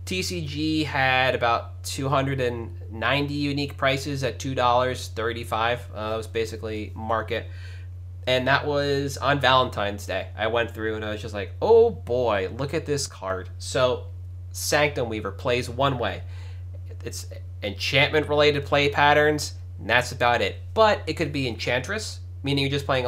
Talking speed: 145 wpm